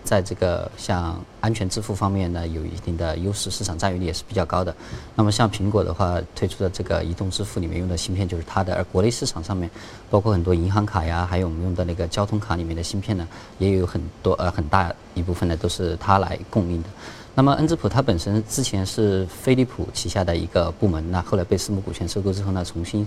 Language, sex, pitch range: Chinese, male, 90-110 Hz